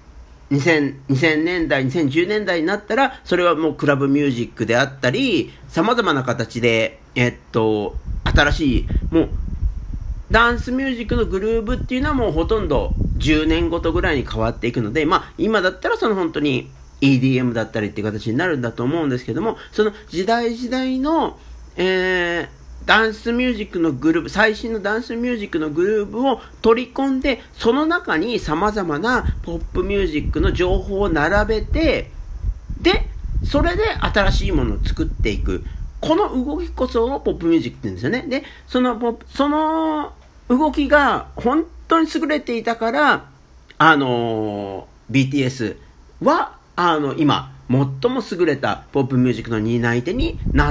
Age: 50-69